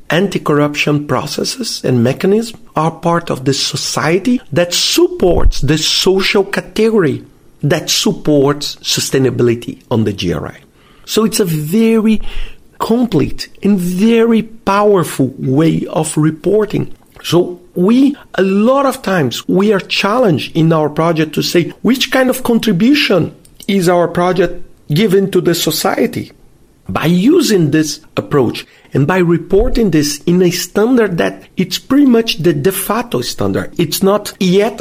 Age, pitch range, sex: 50-69, 160-225 Hz, male